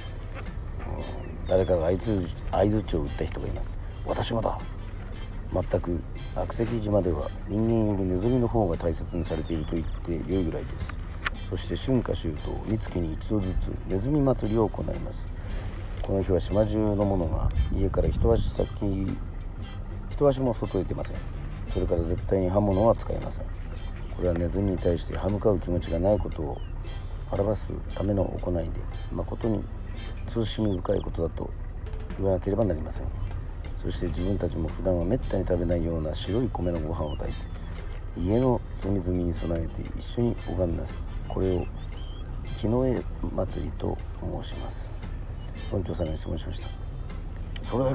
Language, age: Japanese, 40-59